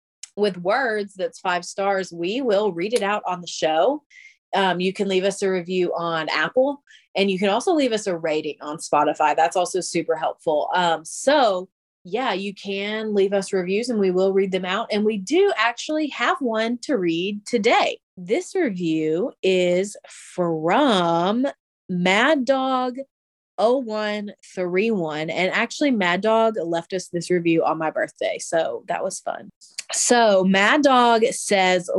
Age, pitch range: 30-49, 180-230 Hz